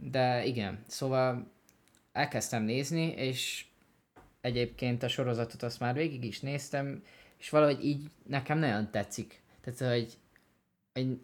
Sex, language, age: male, Hungarian, 20-39